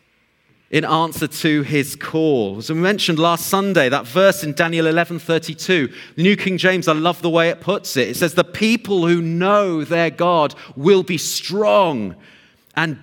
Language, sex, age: English, male, 40-59